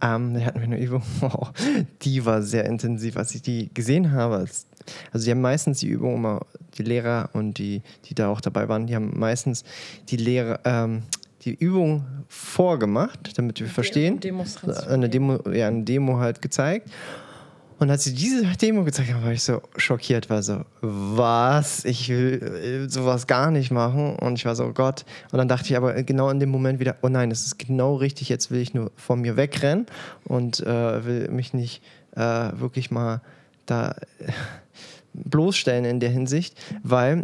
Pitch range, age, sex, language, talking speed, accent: 120-150 Hz, 20-39, male, German, 175 wpm, German